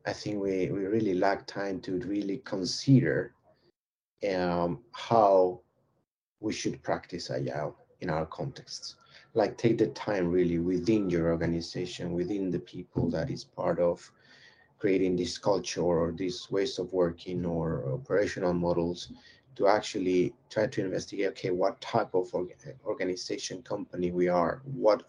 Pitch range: 90-120 Hz